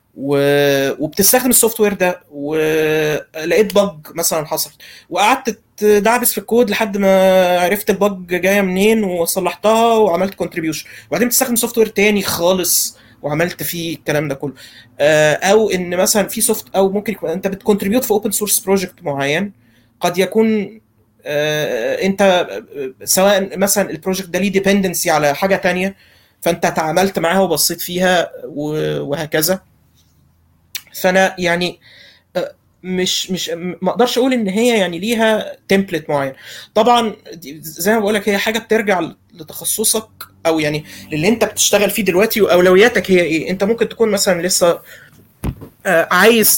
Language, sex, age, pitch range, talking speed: Arabic, male, 20-39, 160-210 Hz, 130 wpm